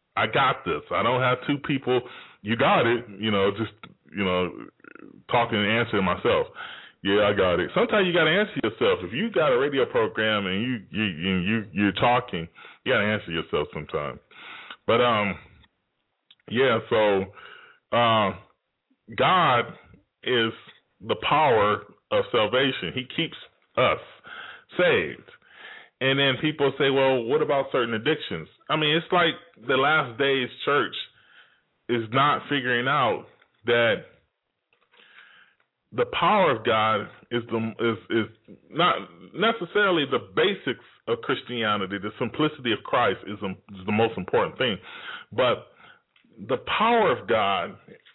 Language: English